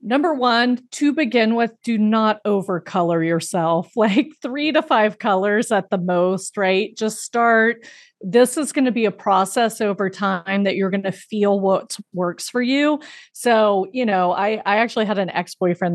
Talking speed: 180 wpm